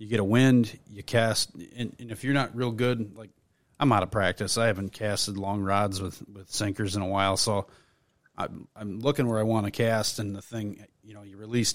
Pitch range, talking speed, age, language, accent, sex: 100-115 Hz, 230 wpm, 30-49, English, American, male